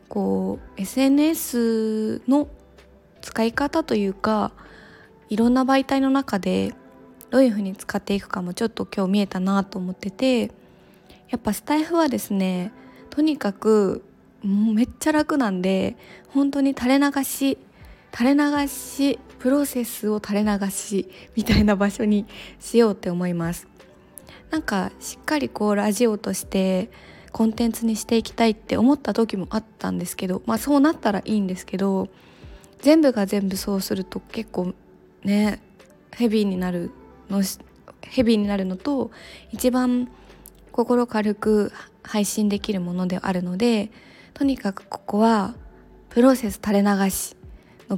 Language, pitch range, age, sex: Japanese, 195-250 Hz, 20-39, female